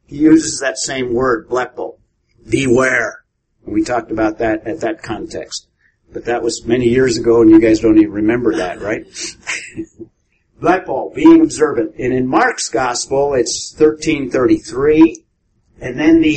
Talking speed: 135 wpm